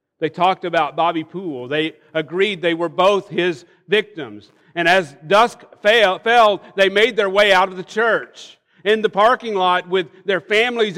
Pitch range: 150-200 Hz